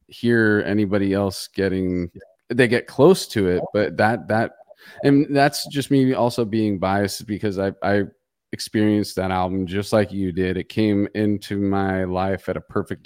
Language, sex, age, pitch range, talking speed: English, male, 30-49, 95-110 Hz, 170 wpm